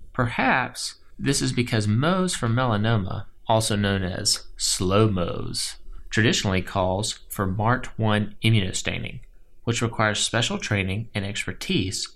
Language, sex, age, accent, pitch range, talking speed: English, male, 30-49, American, 95-120 Hz, 120 wpm